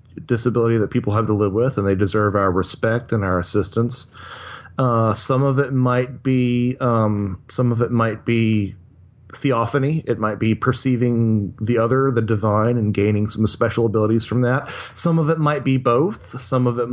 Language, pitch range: English, 100-125 Hz